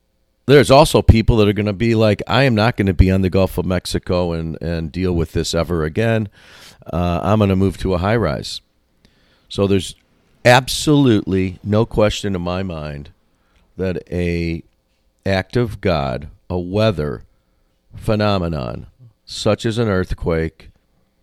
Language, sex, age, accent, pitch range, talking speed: English, male, 50-69, American, 80-105 Hz, 160 wpm